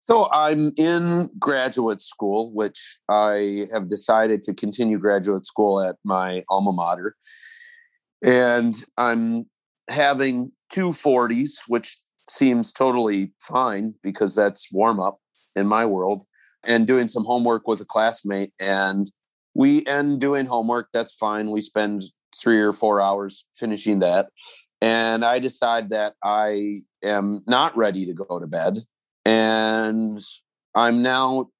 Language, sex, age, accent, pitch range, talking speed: English, male, 30-49, American, 100-125 Hz, 135 wpm